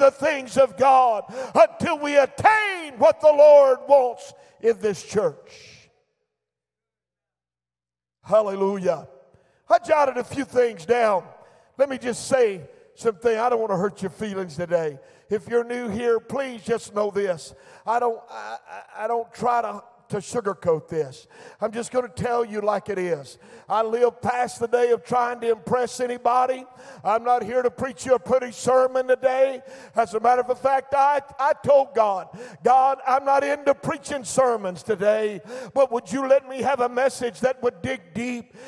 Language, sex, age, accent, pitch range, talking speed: English, male, 50-69, American, 220-260 Hz, 170 wpm